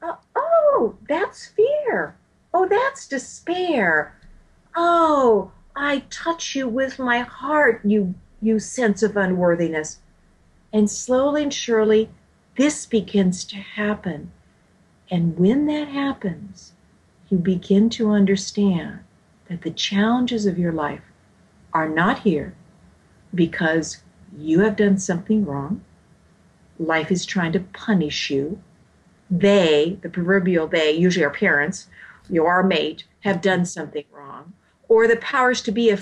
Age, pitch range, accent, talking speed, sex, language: 50-69, 170-230 Hz, American, 125 wpm, female, English